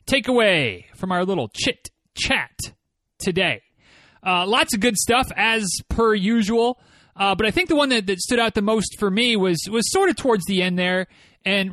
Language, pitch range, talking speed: English, 175-225 Hz, 195 wpm